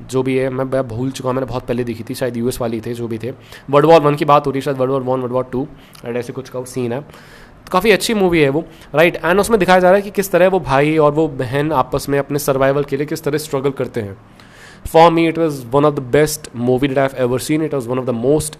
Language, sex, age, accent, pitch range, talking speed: Hindi, male, 20-39, native, 130-155 Hz, 280 wpm